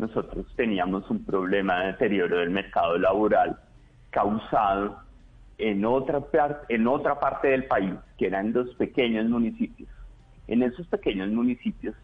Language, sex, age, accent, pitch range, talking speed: Spanish, male, 30-49, Colombian, 100-125 Hz, 135 wpm